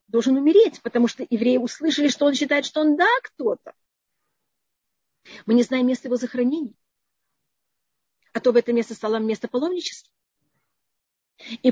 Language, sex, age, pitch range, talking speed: Russian, female, 40-59, 240-300 Hz, 145 wpm